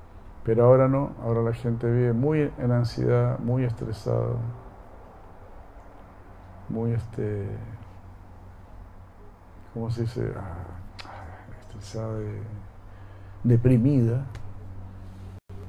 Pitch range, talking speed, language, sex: 95-115 Hz, 80 wpm, Spanish, male